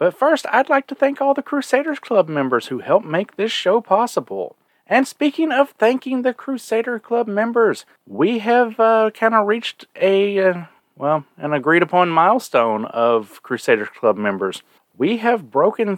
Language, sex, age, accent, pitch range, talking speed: English, male, 40-59, American, 135-220 Hz, 160 wpm